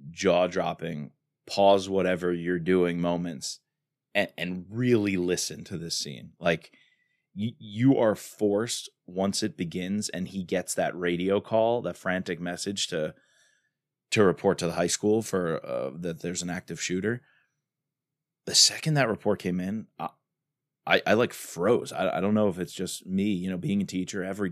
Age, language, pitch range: 20-39, English, 90-110 Hz